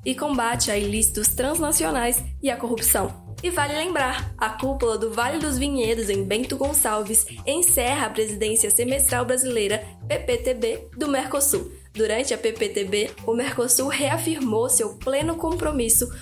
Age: 10-29